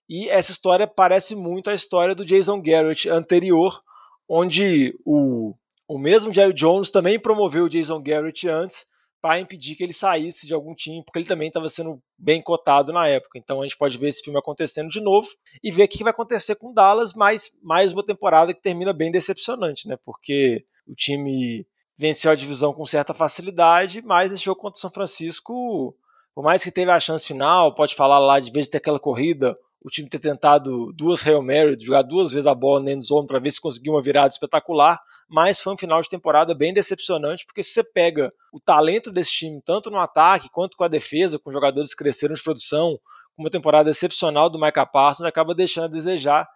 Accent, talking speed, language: Brazilian, 210 wpm, Portuguese